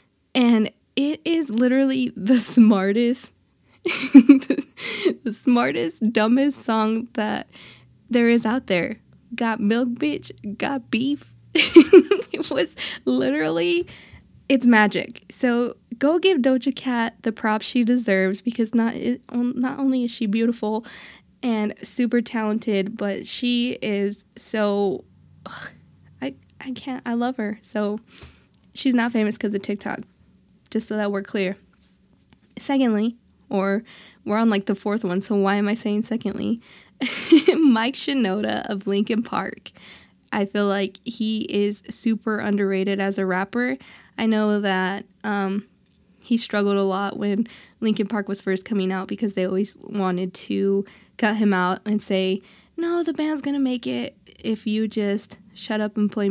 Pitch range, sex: 200-245 Hz, female